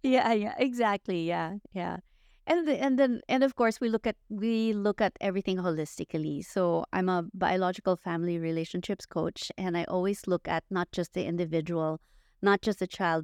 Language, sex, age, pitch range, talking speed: English, female, 30-49, 170-215 Hz, 180 wpm